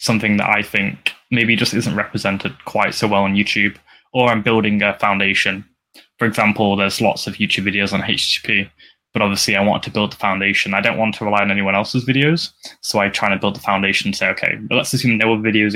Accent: British